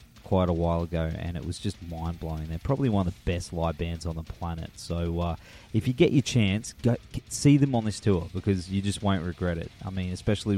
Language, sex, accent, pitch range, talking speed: English, male, Australian, 90-115 Hz, 240 wpm